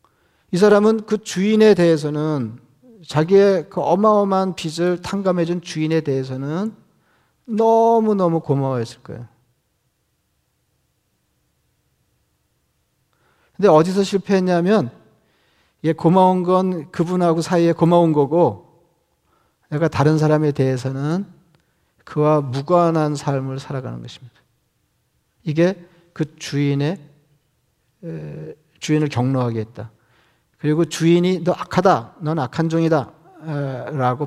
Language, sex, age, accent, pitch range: Korean, male, 40-59, native, 140-180 Hz